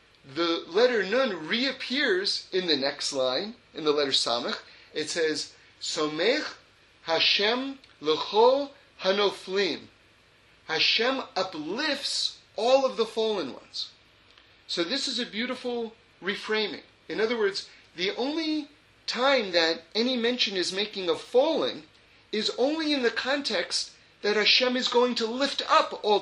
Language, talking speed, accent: English, 130 wpm, American